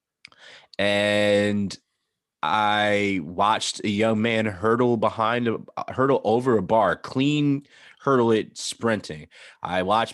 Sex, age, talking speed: male, 20-39, 120 wpm